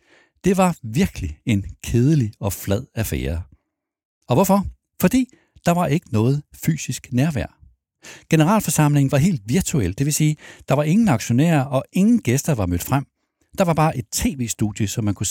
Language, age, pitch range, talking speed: Danish, 60-79, 105-150 Hz, 165 wpm